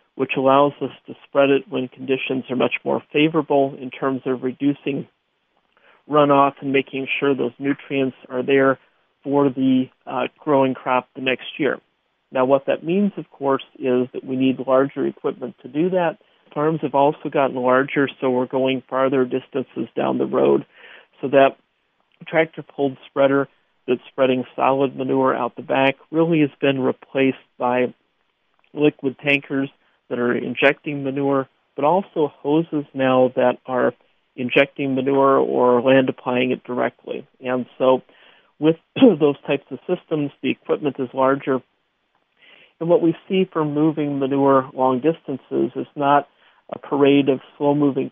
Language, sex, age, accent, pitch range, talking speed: English, male, 50-69, American, 130-145 Hz, 150 wpm